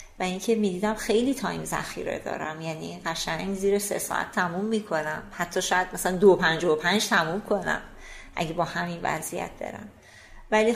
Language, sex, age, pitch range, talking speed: Persian, female, 30-49, 180-215 Hz, 175 wpm